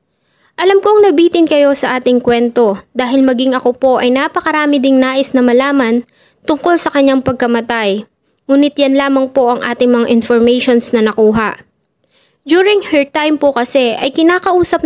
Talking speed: 155 wpm